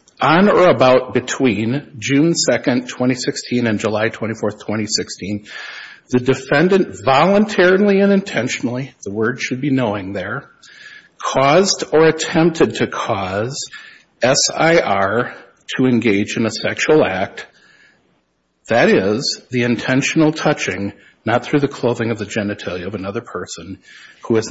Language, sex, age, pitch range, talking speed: English, male, 60-79, 105-140 Hz, 125 wpm